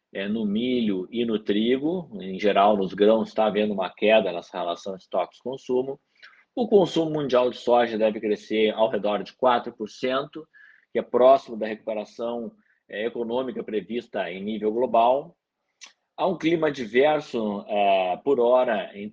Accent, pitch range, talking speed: Brazilian, 110-140 Hz, 150 wpm